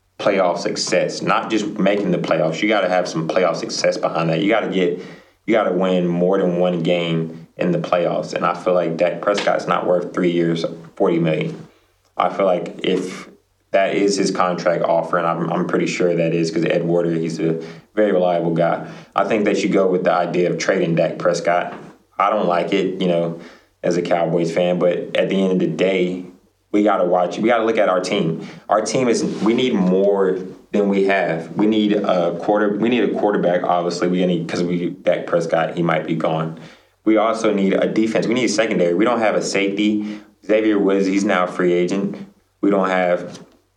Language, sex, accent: English, male, American